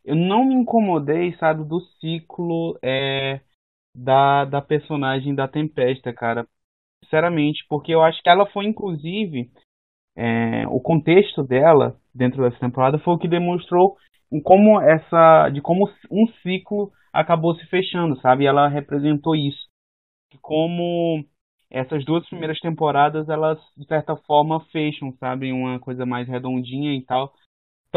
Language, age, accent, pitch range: Portuguese, 20-39, Brazilian, 130-170 Hz